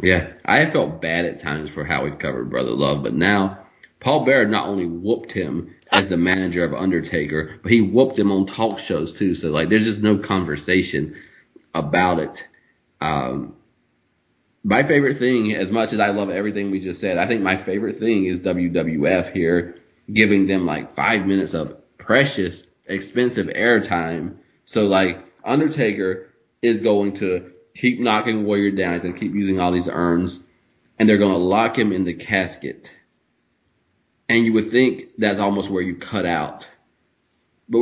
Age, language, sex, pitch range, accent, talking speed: 30-49, English, male, 90-110 Hz, American, 170 wpm